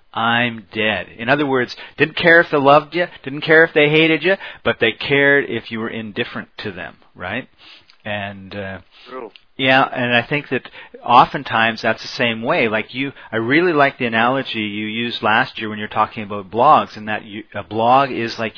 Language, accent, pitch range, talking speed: English, American, 110-135 Hz, 200 wpm